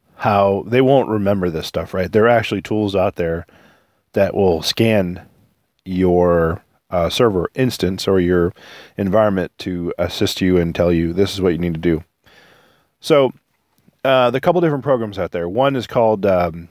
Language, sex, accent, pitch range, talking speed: English, male, American, 95-125 Hz, 170 wpm